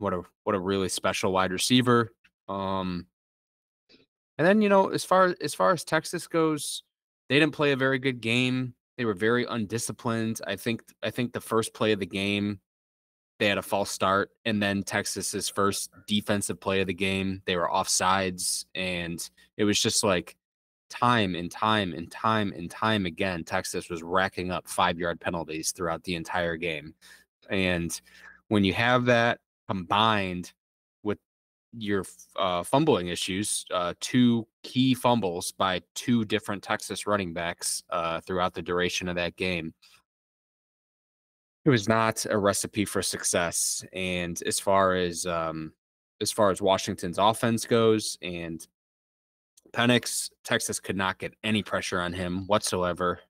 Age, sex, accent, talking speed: 20-39, male, American, 155 wpm